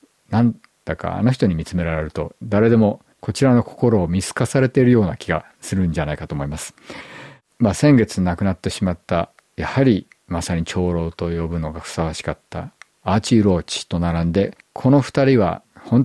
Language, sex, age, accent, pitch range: Japanese, male, 50-69, native, 90-125 Hz